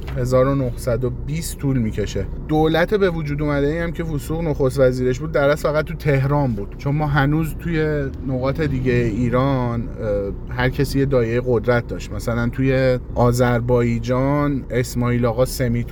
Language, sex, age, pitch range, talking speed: Persian, male, 30-49, 125-145 Hz, 130 wpm